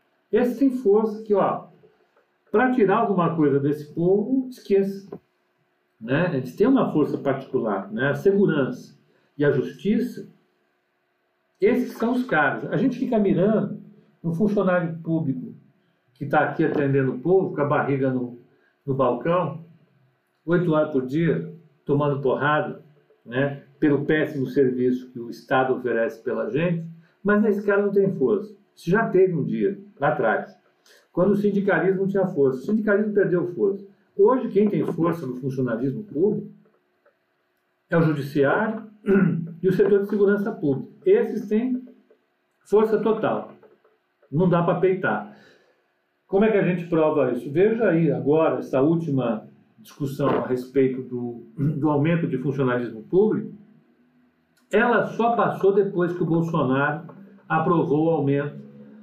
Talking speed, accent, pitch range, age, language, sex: 140 wpm, Brazilian, 140-205 Hz, 60-79, Portuguese, male